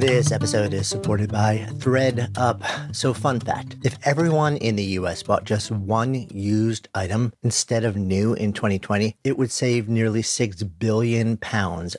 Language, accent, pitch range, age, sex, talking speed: English, American, 100-125 Hz, 40-59, male, 155 wpm